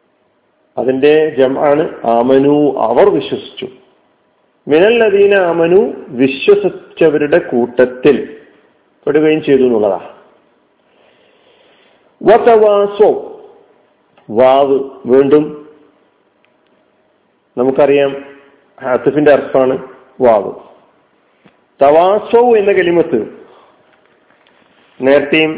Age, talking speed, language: 40-59, 60 wpm, Malayalam